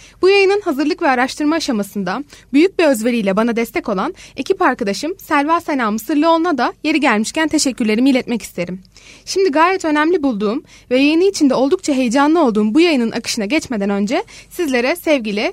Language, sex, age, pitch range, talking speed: Turkish, female, 20-39, 225-320 Hz, 155 wpm